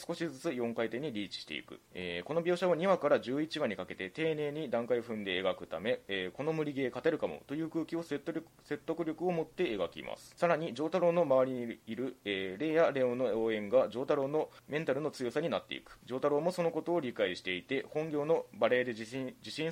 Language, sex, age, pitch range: Japanese, male, 20-39, 115-160 Hz